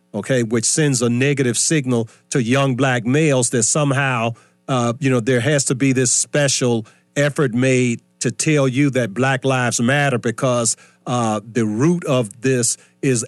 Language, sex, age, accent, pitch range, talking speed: English, male, 40-59, American, 125-160 Hz, 165 wpm